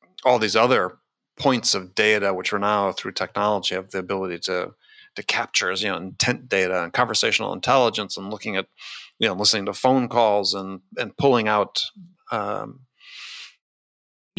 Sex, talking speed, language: male, 160 wpm, English